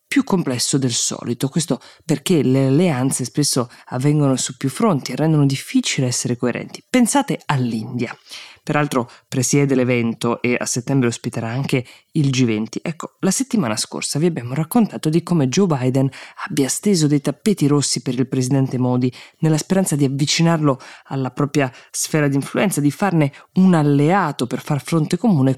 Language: Italian